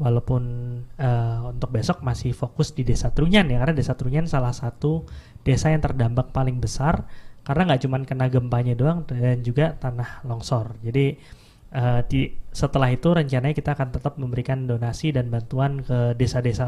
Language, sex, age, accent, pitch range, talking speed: Indonesian, male, 20-39, native, 120-150 Hz, 160 wpm